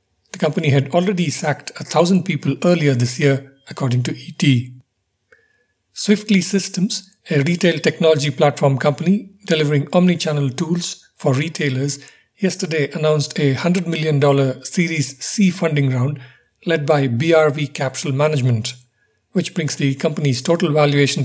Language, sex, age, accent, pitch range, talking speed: English, male, 50-69, Indian, 135-170 Hz, 130 wpm